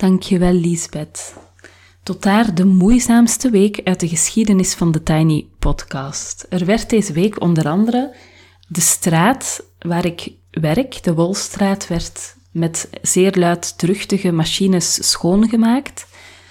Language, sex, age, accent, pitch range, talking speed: Dutch, female, 30-49, Belgian, 160-200 Hz, 120 wpm